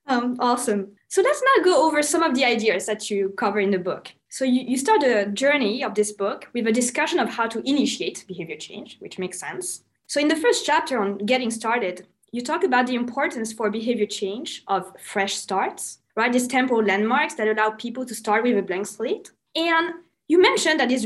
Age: 20-39